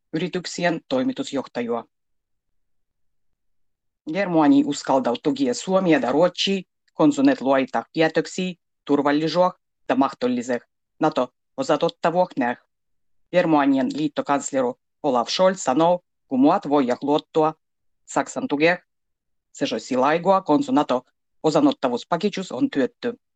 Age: 30-49